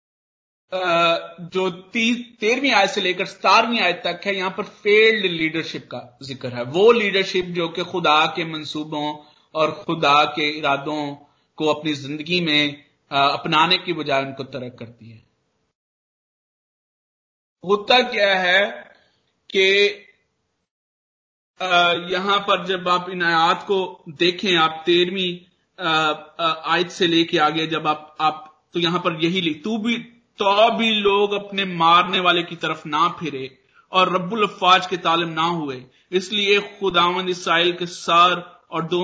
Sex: male